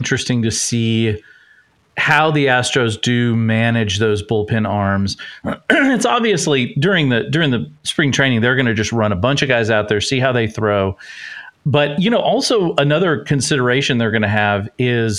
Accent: American